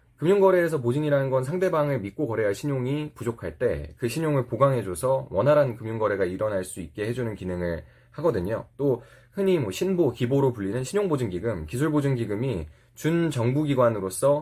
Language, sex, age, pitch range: Korean, male, 20-39, 110-150 Hz